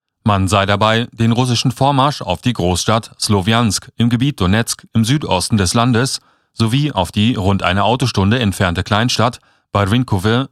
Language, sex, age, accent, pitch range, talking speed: German, male, 40-59, German, 95-125 Hz, 150 wpm